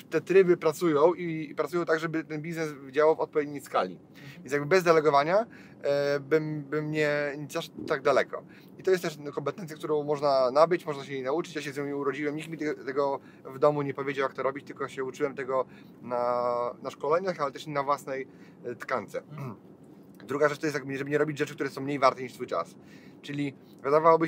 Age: 30-49